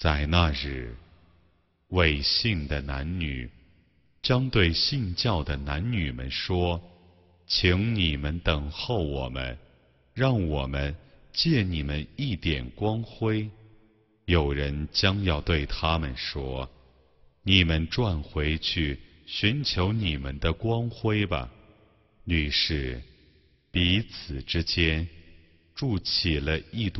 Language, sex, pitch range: English, male, 70-95 Hz